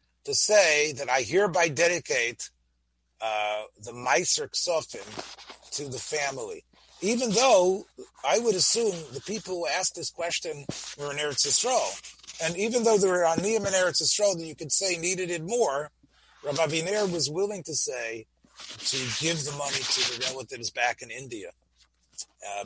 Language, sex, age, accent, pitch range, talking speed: English, male, 30-49, American, 115-185 Hz, 160 wpm